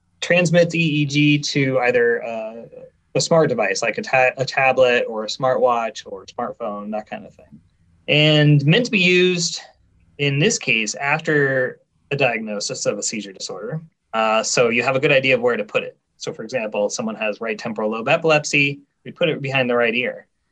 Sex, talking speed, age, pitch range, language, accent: male, 195 wpm, 20-39, 125-160 Hz, English, American